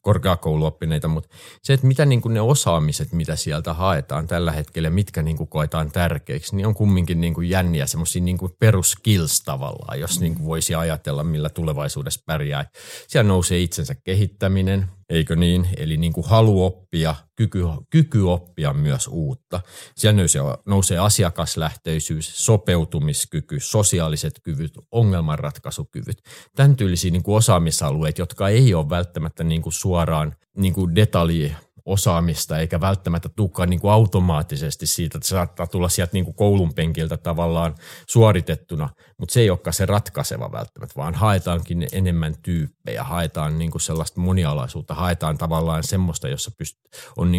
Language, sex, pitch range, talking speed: Finnish, male, 80-105 Hz, 120 wpm